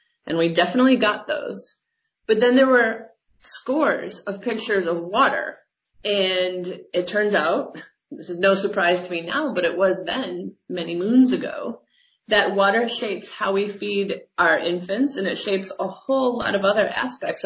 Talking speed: 170 wpm